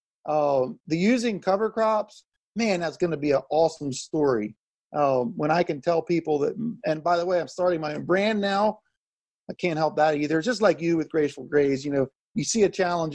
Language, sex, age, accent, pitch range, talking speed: English, male, 40-59, American, 160-220 Hz, 210 wpm